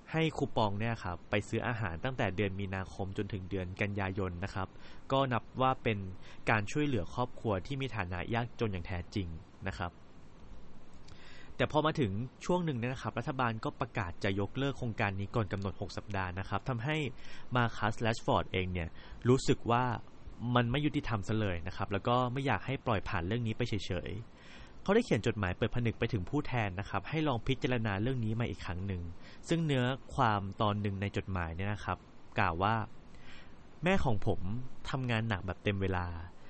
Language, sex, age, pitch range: Thai, male, 20-39, 95-130 Hz